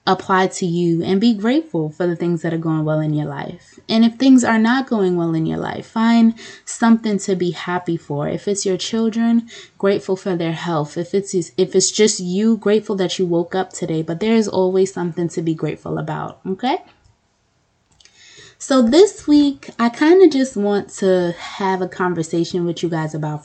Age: 20-39